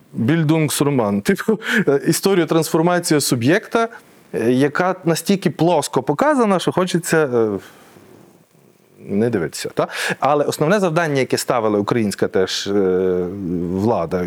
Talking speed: 95 wpm